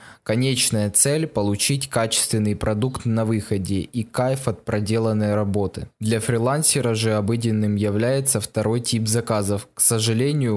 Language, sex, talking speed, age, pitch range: Russian, male, 125 wpm, 20-39, 110-125 Hz